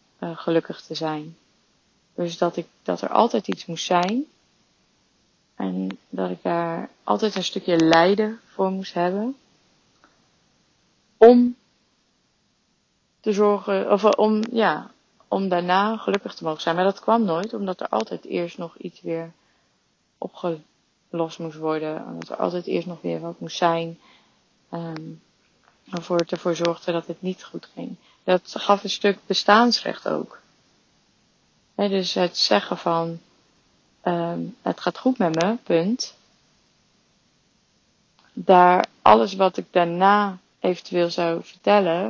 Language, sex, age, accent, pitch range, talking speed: Dutch, female, 30-49, Dutch, 165-205 Hz, 135 wpm